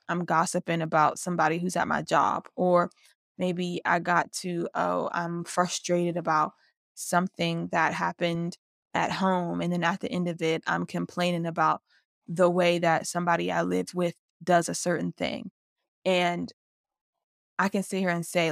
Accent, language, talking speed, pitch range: American, English, 160 wpm, 170-185 Hz